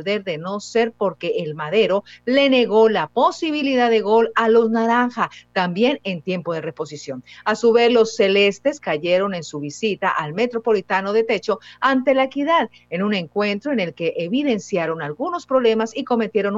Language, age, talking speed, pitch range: Spanish, 50-69, 170 wpm, 195-250 Hz